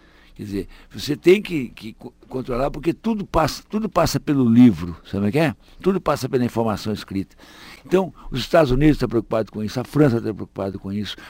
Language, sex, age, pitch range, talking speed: Portuguese, male, 60-79, 100-150 Hz, 190 wpm